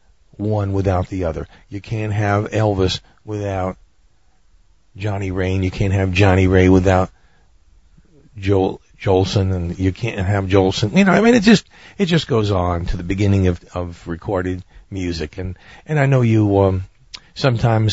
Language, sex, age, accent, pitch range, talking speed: English, male, 50-69, American, 95-110 Hz, 160 wpm